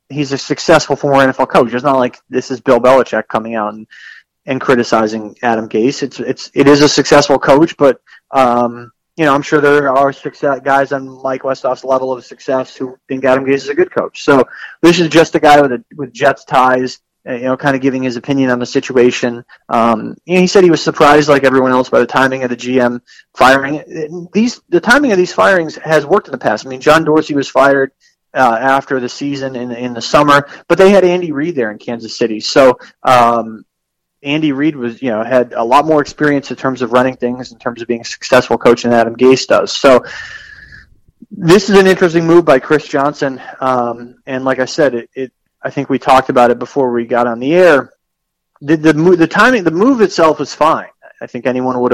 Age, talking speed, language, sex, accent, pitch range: 30-49, 220 wpm, English, male, American, 125-155 Hz